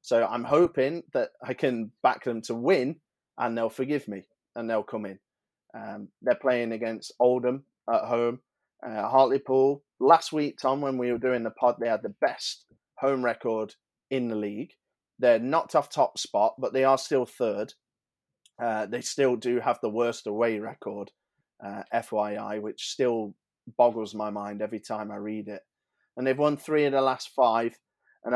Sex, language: male, English